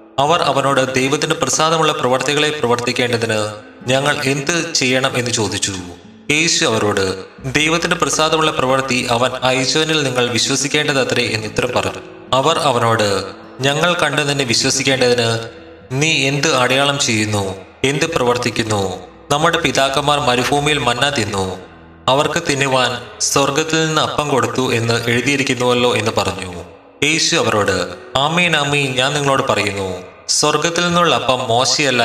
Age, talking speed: 20-39, 110 wpm